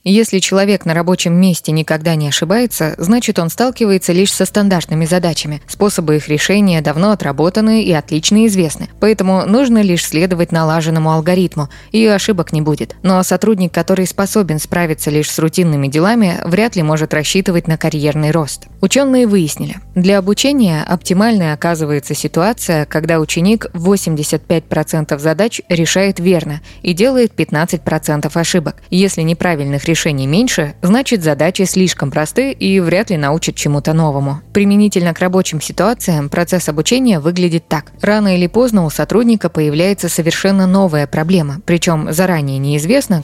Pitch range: 155-195 Hz